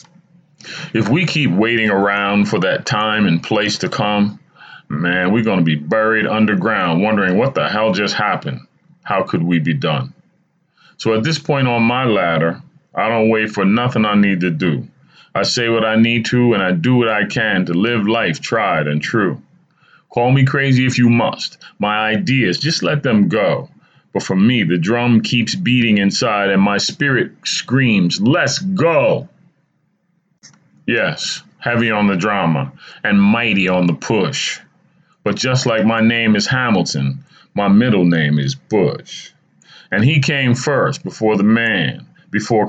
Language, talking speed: English, 170 wpm